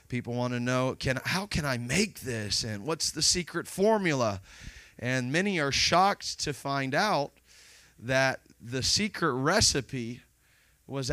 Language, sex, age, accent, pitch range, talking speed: English, male, 30-49, American, 130-180 Hz, 145 wpm